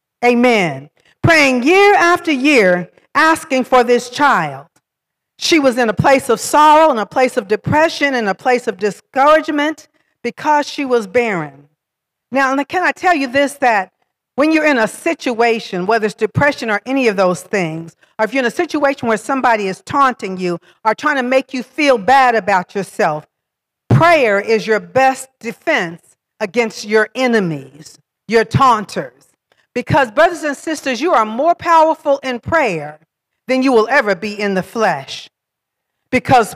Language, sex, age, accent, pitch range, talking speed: English, female, 50-69, American, 215-300 Hz, 165 wpm